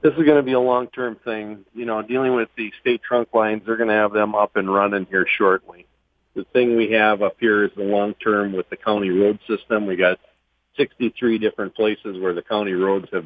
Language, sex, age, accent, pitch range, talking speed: English, male, 40-59, American, 100-120 Hz, 225 wpm